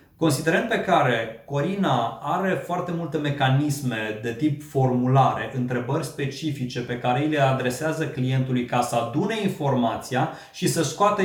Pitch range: 125-155 Hz